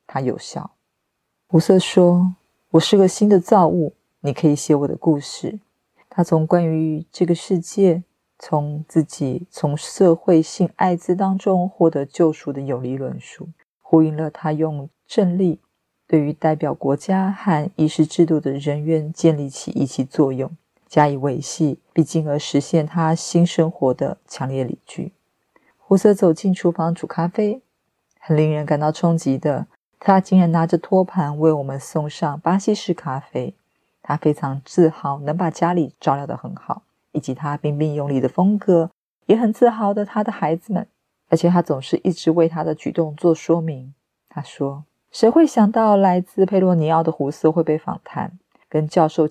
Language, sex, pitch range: Chinese, female, 150-180 Hz